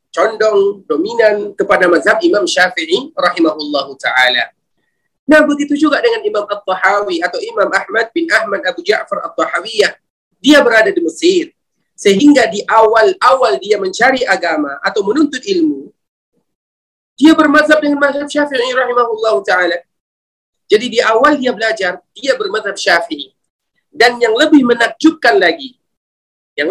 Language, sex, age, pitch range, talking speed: Indonesian, male, 40-59, 200-305 Hz, 125 wpm